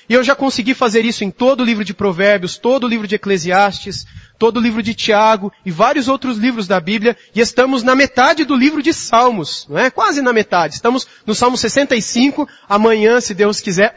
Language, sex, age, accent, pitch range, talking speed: Portuguese, male, 30-49, Brazilian, 210-260 Hz, 210 wpm